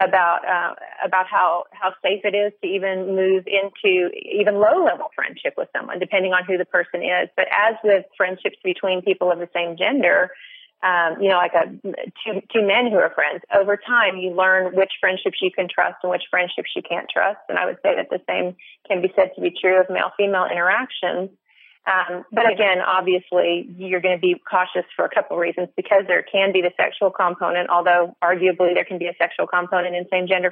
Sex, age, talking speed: female, 30-49, 210 wpm